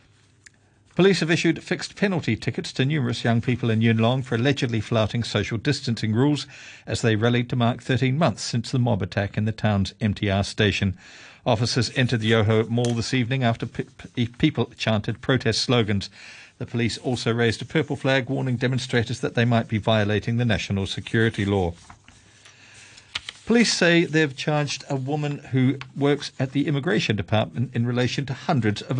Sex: male